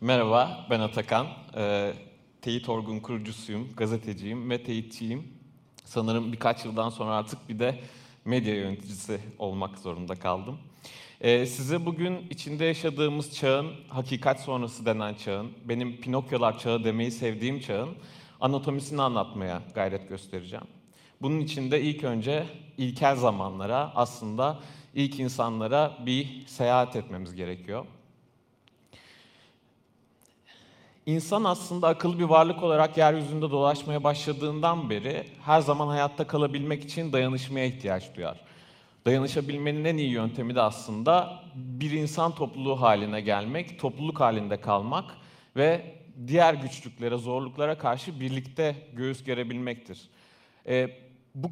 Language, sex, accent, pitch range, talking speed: Turkish, male, native, 115-150 Hz, 110 wpm